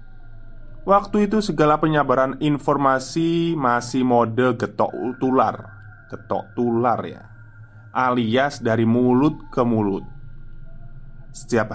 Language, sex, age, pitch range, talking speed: Indonesian, male, 20-39, 110-140 Hz, 90 wpm